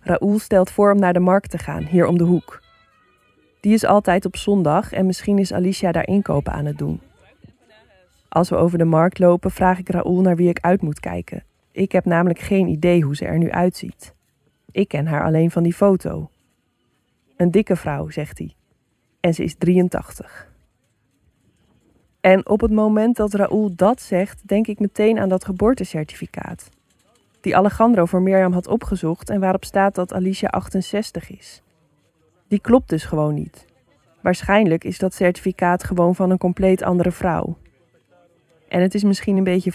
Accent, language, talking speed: Dutch, Dutch, 175 wpm